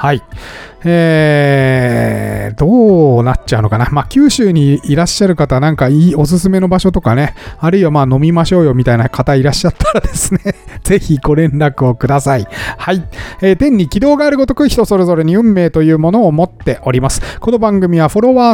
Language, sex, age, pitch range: Japanese, male, 40-59, 130-190 Hz